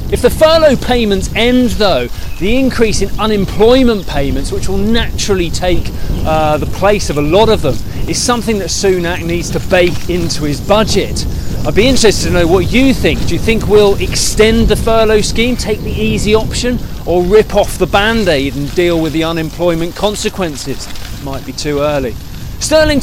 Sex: male